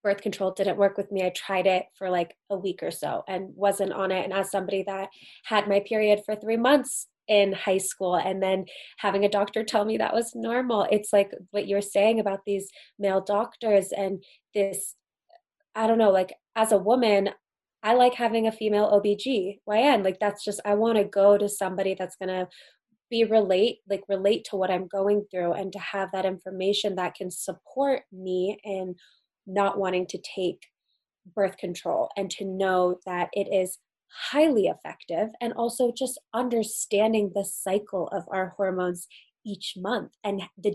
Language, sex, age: English, female, 20-39